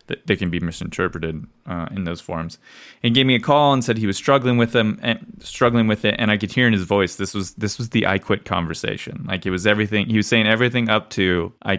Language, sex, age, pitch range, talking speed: English, male, 20-39, 90-110 Hz, 260 wpm